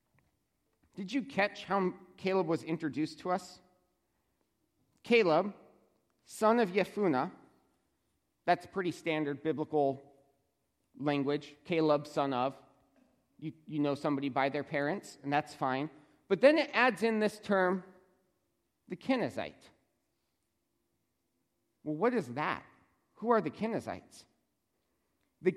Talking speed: 115 wpm